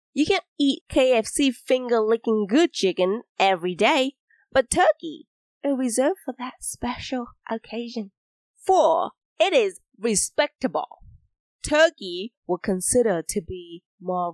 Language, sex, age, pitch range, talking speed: English, female, 20-39, 200-290 Hz, 115 wpm